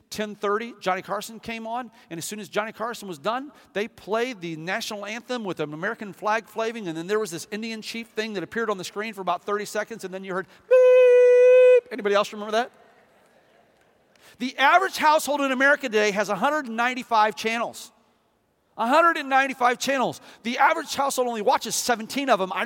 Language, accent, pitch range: English, American, 195-255 Hz